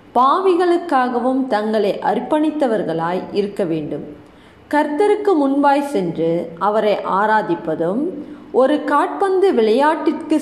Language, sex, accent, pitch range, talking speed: Tamil, female, native, 205-315 Hz, 75 wpm